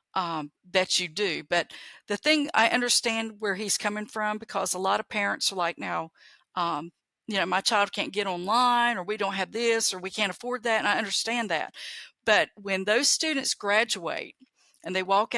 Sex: female